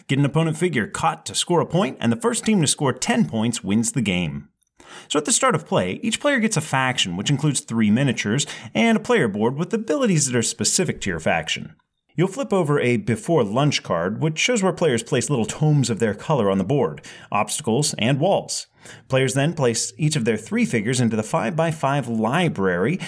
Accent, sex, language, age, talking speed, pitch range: American, male, English, 30-49, 210 wpm, 120-190 Hz